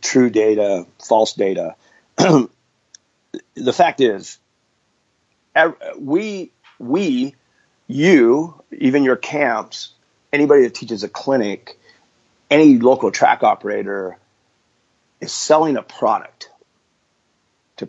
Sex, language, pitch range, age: male, English, 115-150 Hz, 40-59